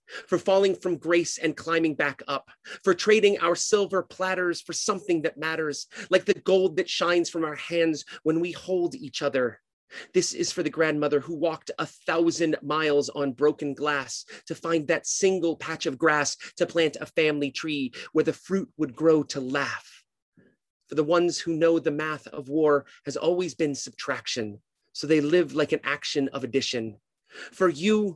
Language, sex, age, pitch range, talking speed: English, male, 30-49, 155-205 Hz, 180 wpm